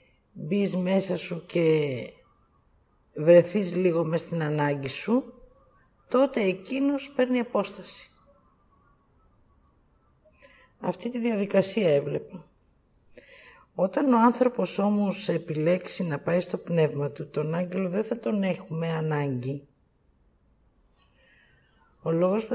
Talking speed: 100 wpm